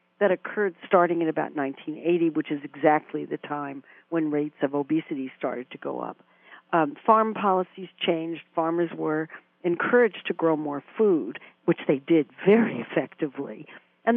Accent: American